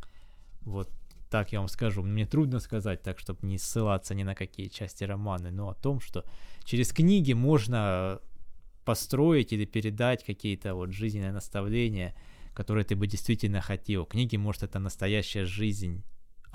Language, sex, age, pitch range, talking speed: Russian, male, 20-39, 95-120 Hz, 150 wpm